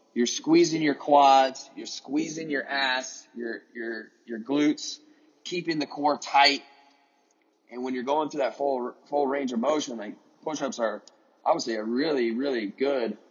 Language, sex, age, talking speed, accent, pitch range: English, male, 20-39, 160 wpm, American, 120-150 Hz